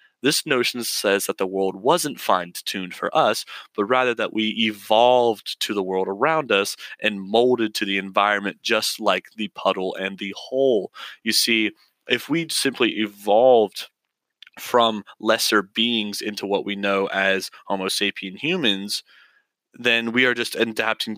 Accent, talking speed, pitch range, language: American, 155 wpm, 95-115 Hz, English